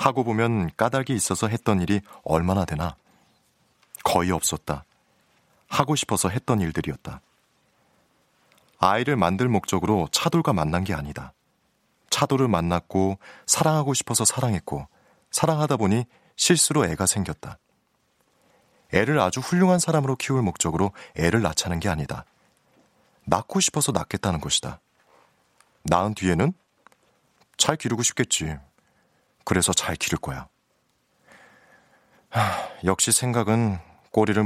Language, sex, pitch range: Korean, male, 90-130 Hz